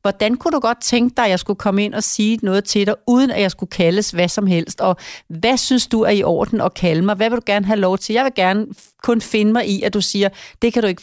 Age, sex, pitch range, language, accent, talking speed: 40-59, female, 175-225 Hz, Danish, native, 300 wpm